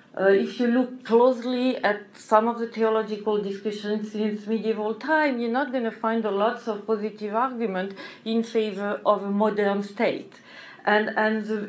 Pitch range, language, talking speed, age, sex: 210-270 Hz, English, 170 wpm, 40-59, female